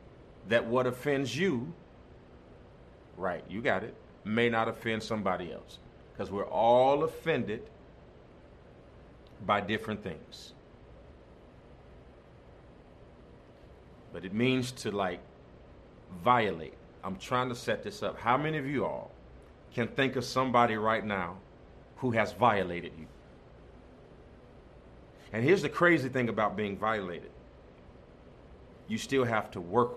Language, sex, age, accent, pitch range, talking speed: English, male, 40-59, American, 85-130 Hz, 120 wpm